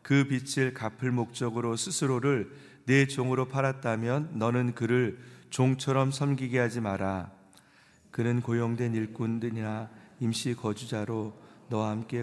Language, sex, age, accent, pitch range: Korean, male, 40-59, native, 115-130 Hz